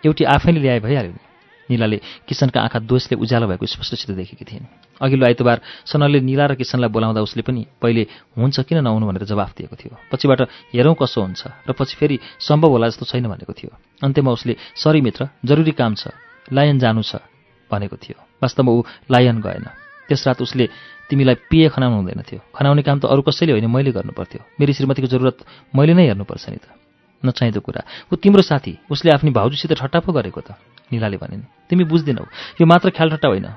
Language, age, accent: English, 40-59, Indian